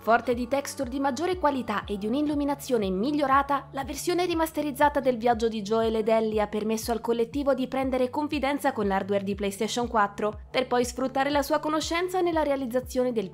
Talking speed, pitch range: 180 wpm, 225-290 Hz